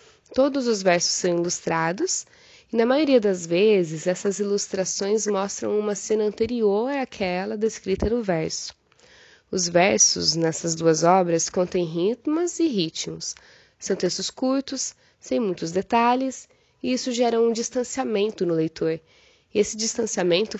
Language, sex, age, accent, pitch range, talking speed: Portuguese, female, 10-29, Brazilian, 180-235 Hz, 130 wpm